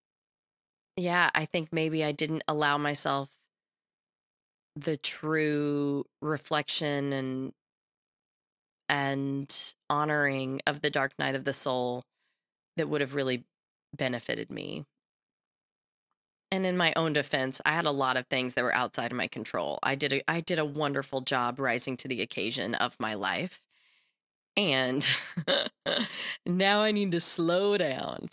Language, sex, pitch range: English, female, 135-165 Hz